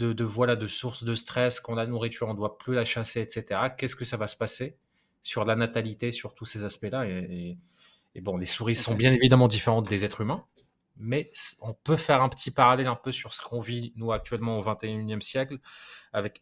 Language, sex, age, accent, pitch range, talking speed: French, male, 20-39, French, 105-120 Hz, 230 wpm